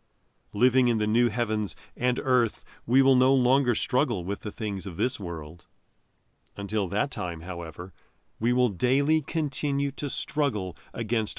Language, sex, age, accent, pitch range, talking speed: English, male, 40-59, American, 105-145 Hz, 155 wpm